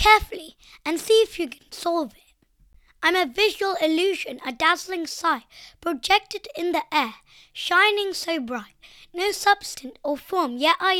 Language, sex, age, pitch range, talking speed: English, female, 20-39, 305-395 Hz, 155 wpm